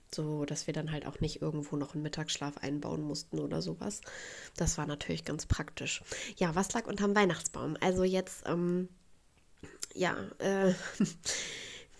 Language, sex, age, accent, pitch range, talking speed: German, female, 20-39, German, 160-190 Hz, 150 wpm